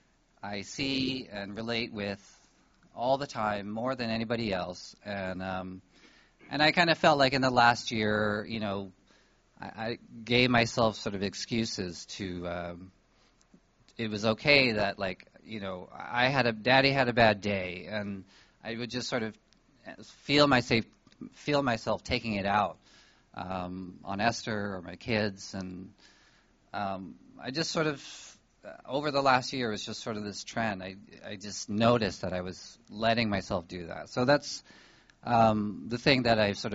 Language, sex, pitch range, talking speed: English, male, 95-120 Hz, 170 wpm